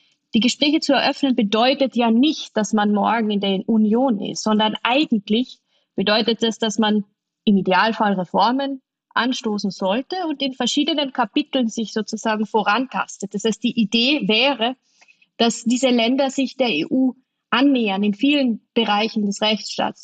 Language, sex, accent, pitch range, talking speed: German, female, German, 210-255 Hz, 145 wpm